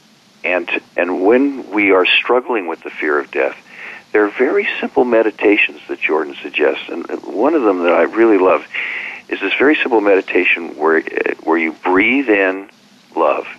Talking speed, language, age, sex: 170 wpm, English, 50-69, male